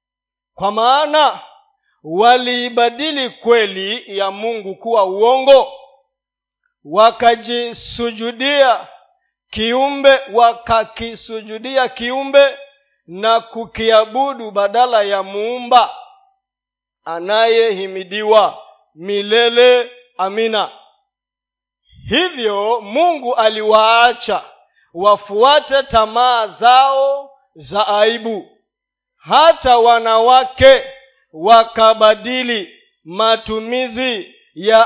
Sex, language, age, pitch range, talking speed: male, Swahili, 40-59, 225-270 Hz, 55 wpm